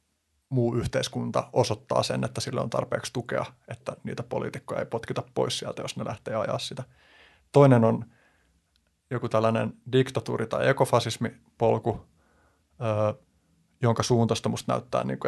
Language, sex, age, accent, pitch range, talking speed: Finnish, male, 30-49, native, 110-125 Hz, 120 wpm